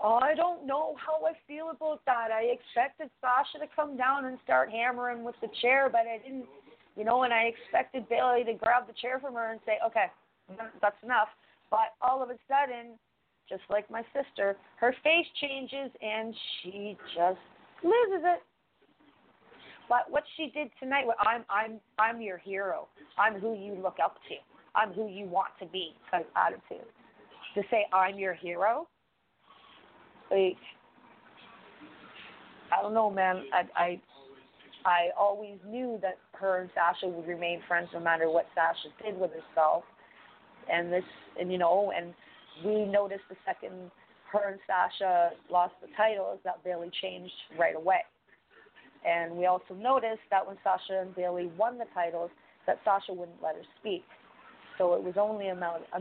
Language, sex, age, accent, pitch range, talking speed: English, female, 30-49, American, 180-245 Hz, 165 wpm